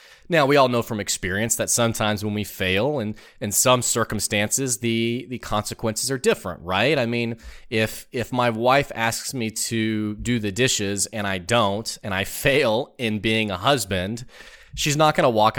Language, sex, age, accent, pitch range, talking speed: English, male, 30-49, American, 100-130 Hz, 185 wpm